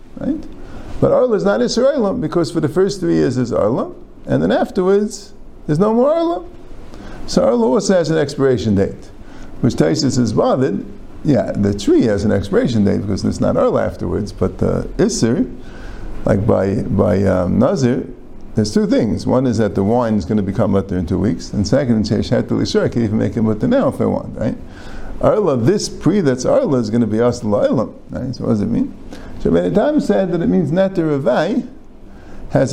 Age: 50-69